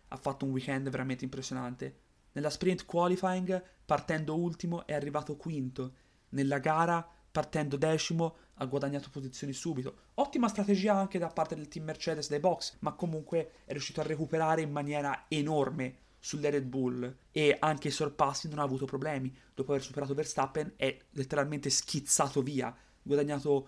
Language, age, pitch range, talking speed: Italian, 30-49, 130-160 Hz, 155 wpm